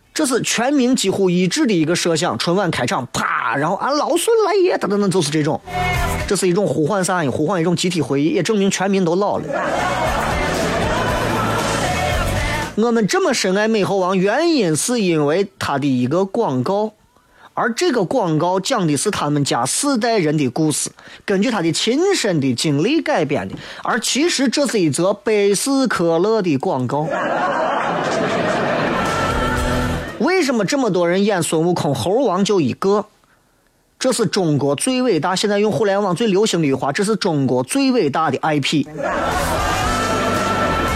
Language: Chinese